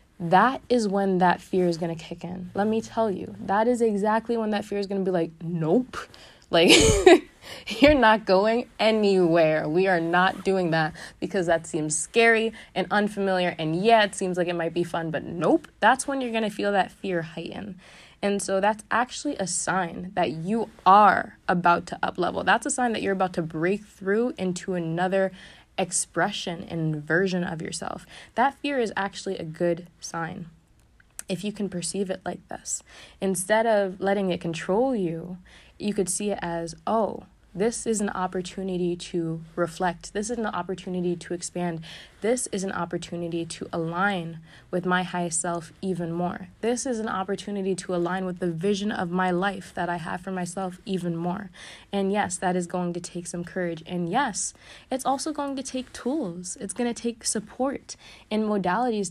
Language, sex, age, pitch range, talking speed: English, female, 20-39, 175-215 Hz, 185 wpm